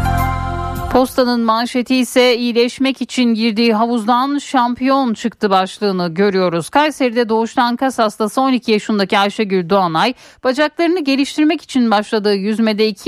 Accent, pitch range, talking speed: native, 205-260 Hz, 115 wpm